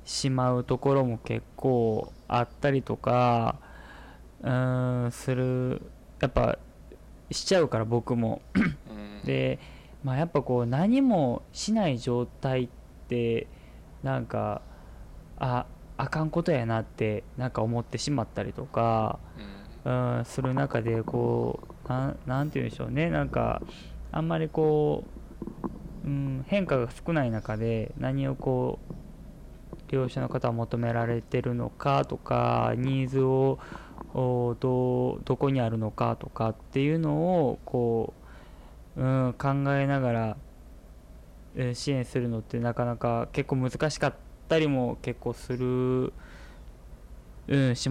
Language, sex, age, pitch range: Japanese, male, 20-39, 115-135 Hz